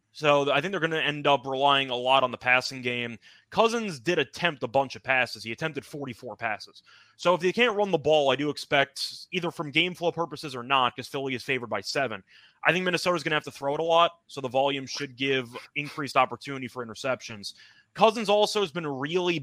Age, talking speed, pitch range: 20-39, 230 wpm, 130-170 Hz